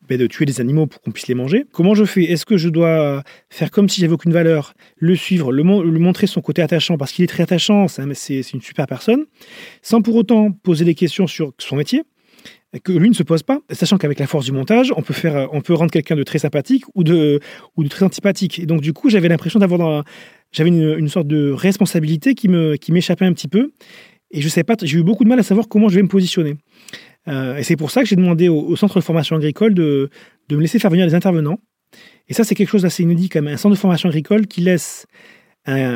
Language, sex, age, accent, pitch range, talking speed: French, male, 30-49, French, 155-205 Hz, 260 wpm